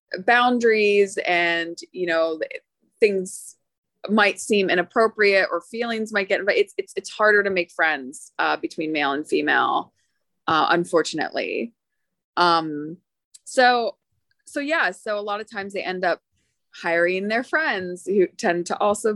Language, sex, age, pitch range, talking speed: English, female, 20-39, 180-235 Hz, 145 wpm